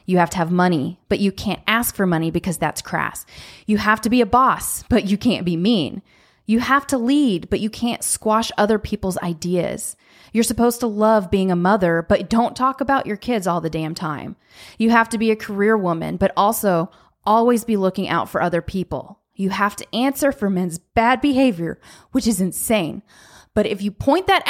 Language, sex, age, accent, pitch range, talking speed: English, female, 20-39, American, 175-225 Hz, 210 wpm